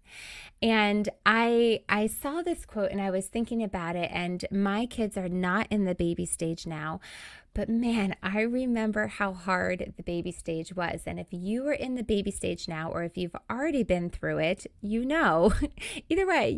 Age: 20-39